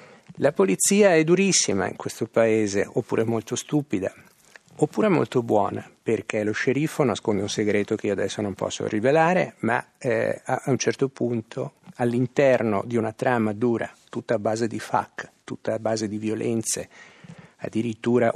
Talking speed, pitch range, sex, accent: 155 wpm, 110-140 Hz, male, native